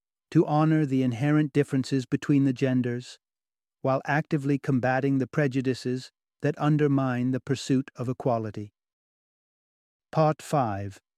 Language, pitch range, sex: English, 130-155 Hz, male